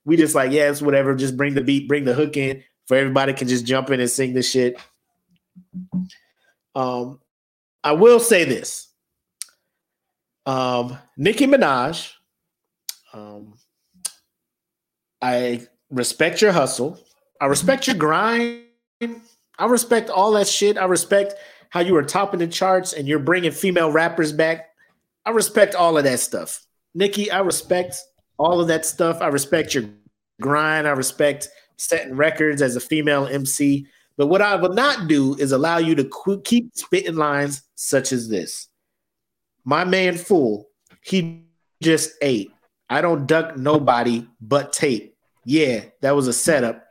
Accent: American